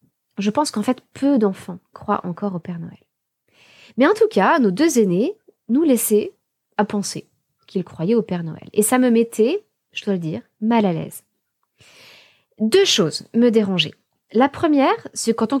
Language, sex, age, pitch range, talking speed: French, female, 20-39, 185-245 Hz, 180 wpm